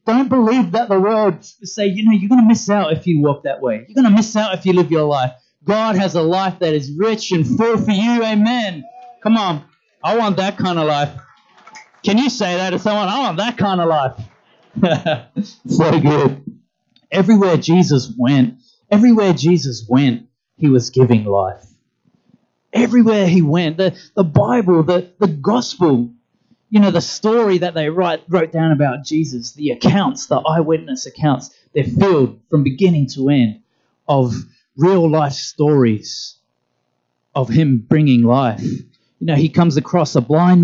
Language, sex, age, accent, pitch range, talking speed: English, male, 30-49, Australian, 145-210 Hz, 175 wpm